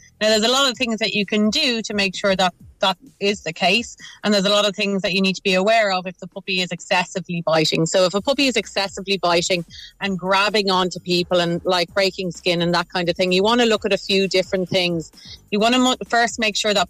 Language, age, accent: English, 30-49, Irish